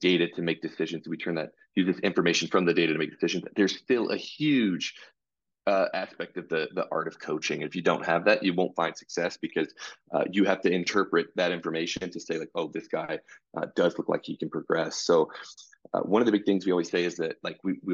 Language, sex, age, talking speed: English, male, 30-49, 240 wpm